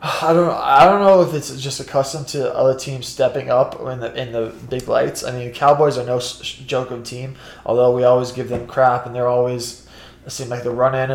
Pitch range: 120-135 Hz